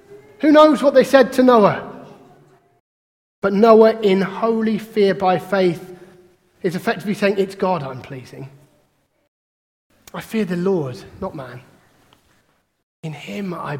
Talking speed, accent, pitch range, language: 130 wpm, British, 165-250 Hz, English